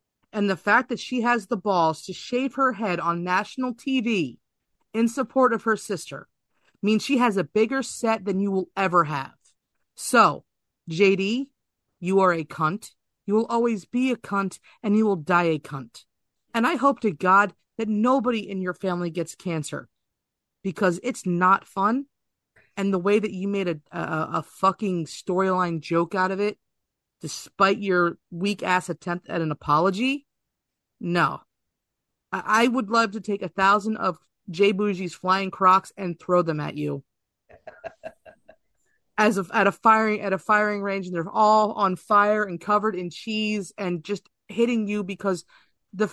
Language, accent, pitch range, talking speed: English, American, 180-225 Hz, 170 wpm